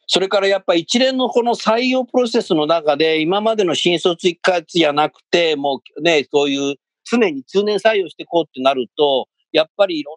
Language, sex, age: Japanese, male, 50-69